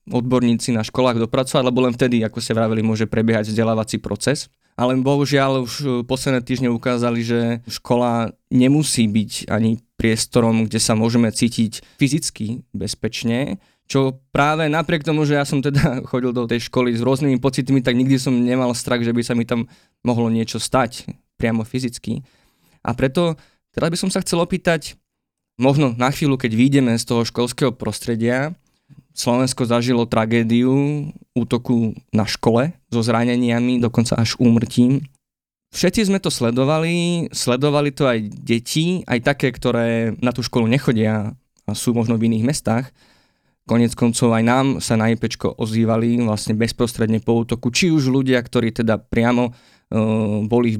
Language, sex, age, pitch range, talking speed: Slovak, male, 20-39, 115-135 Hz, 155 wpm